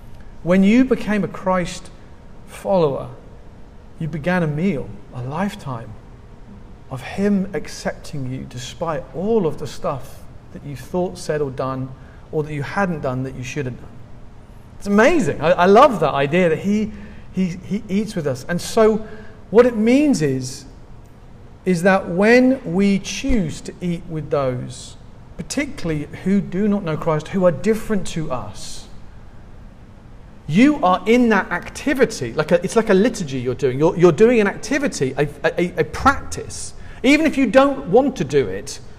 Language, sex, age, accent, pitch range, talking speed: English, male, 40-59, British, 140-205 Hz, 165 wpm